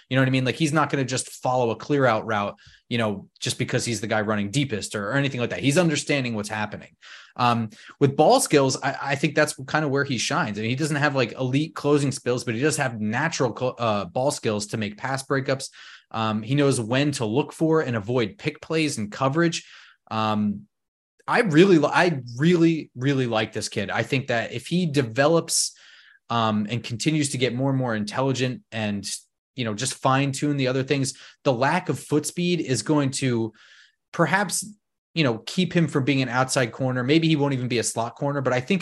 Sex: male